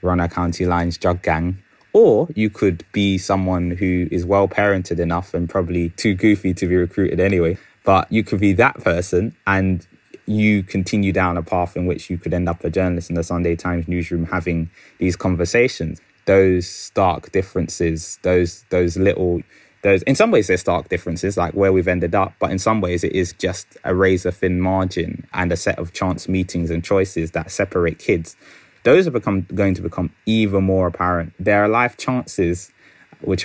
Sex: male